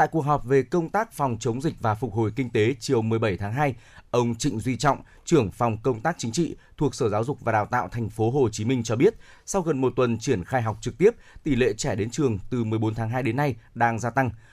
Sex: male